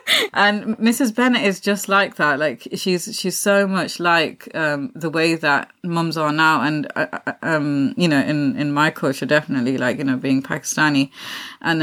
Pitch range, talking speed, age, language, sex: 150-185 Hz, 180 wpm, 30-49, English, female